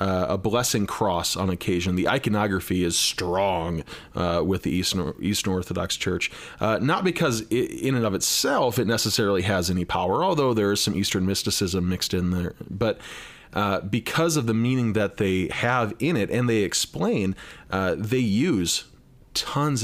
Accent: American